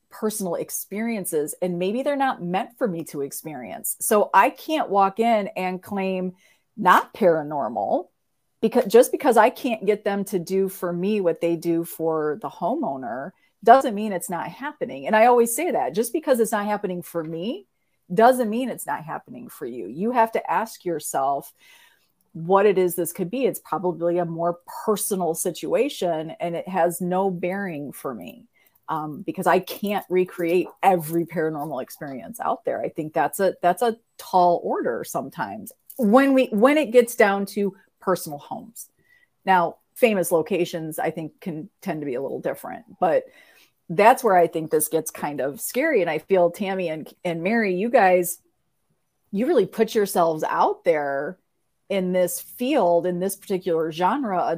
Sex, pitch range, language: female, 170-225 Hz, English